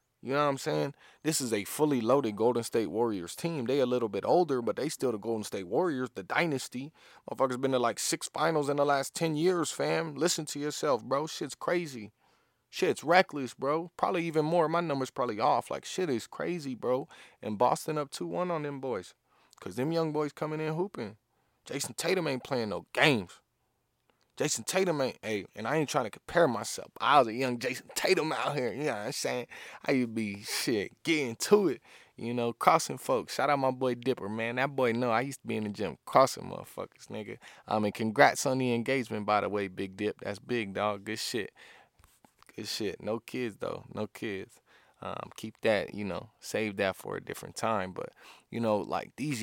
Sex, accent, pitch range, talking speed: male, American, 110-150 Hz, 210 wpm